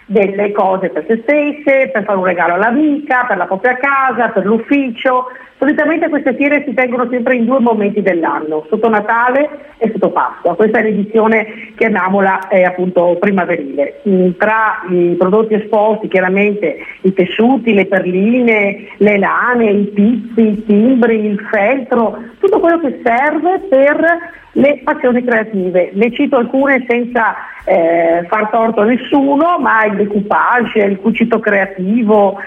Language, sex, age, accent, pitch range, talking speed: Italian, female, 50-69, native, 195-245 Hz, 150 wpm